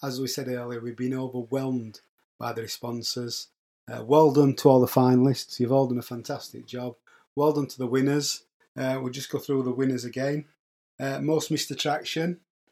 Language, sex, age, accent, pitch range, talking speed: English, male, 30-49, British, 130-150 Hz, 190 wpm